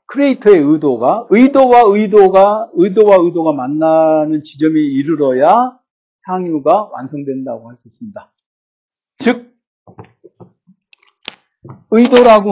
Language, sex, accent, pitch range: Korean, male, native, 170-245 Hz